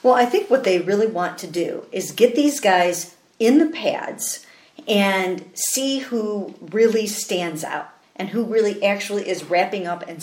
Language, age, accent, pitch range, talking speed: English, 50-69, American, 175-225 Hz, 175 wpm